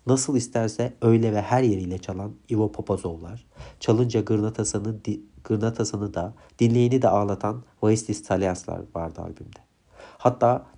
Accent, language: native, Turkish